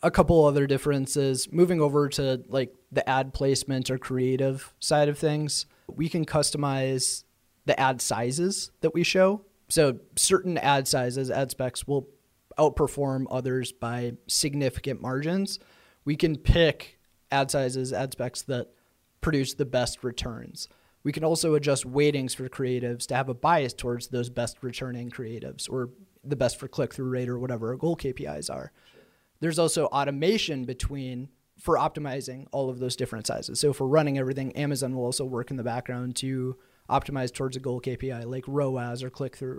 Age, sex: 30-49, male